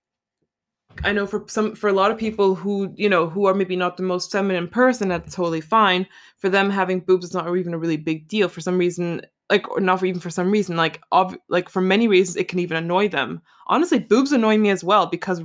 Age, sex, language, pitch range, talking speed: 20-39, female, English, 180-210 Hz, 235 wpm